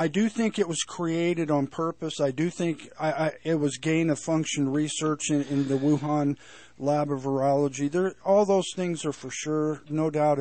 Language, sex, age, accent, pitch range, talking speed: English, male, 50-69, American, 155-190 Hz, 175 wpm